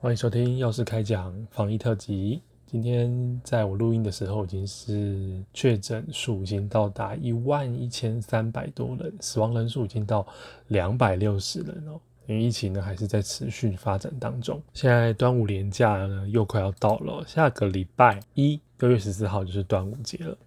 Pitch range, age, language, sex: 100-120 Hz, 20-39, Chinese, male